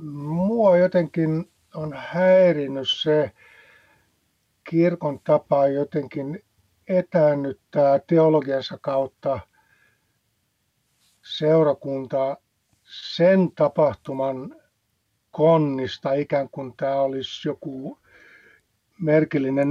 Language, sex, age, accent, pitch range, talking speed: Finnish, male, 60-79, native, 140-170 Hz, 65 wpm